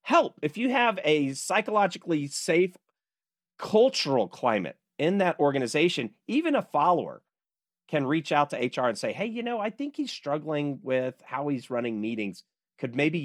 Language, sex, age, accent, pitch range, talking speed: English, male, 40-59, American, 130-215 Hz, 165 wpm